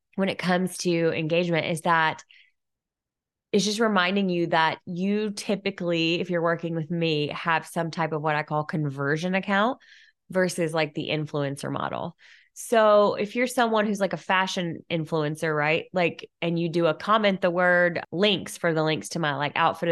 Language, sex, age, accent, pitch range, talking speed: English, female, 20-39, American, 155-195 Hz, 180 wpm